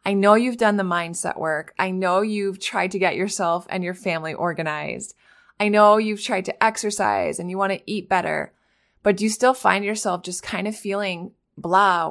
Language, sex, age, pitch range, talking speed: English, female, 20-39, 175-215 Hz, 200 wpm